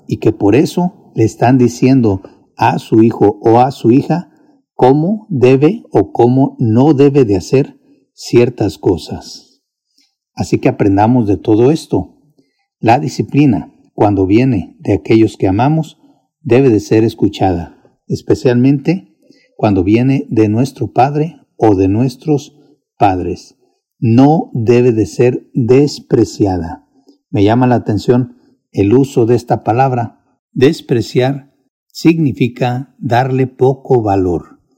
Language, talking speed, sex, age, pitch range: Spanish, 125 wpm, male, 50-69, 110-140 Hz